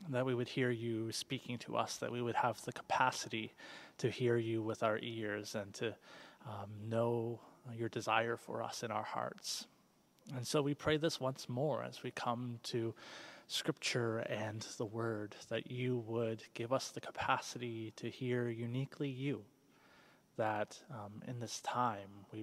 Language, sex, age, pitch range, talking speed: English, male, 20-39, 110-130 Hz, 170 wpm